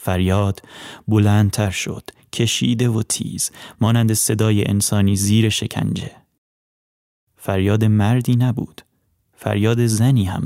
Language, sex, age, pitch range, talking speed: Persian, male, 30-49, 100-110 Hz, 100 wpm